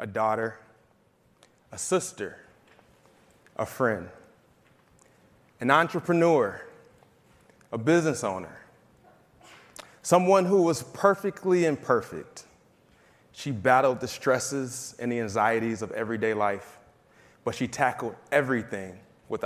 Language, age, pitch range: English, 20-39, 110-135 Hz